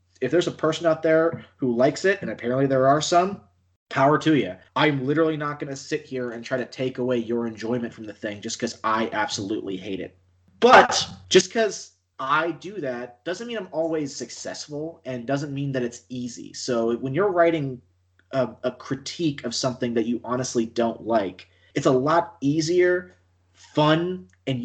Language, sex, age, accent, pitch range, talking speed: English, male, 30-49, American, 105-145 Hz, 185 wpm